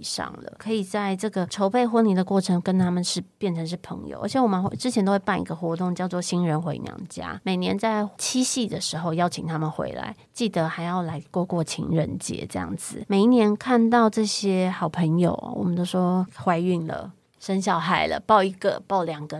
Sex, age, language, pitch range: female, 30-49, Chinese, 170-205 Hz